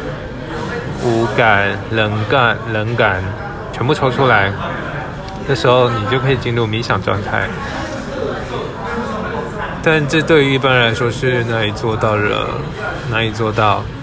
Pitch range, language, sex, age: 105-125 Hz, Chinese, male, 20-39